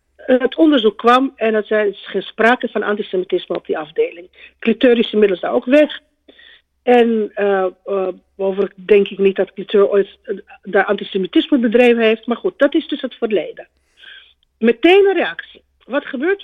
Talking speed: 155 wpm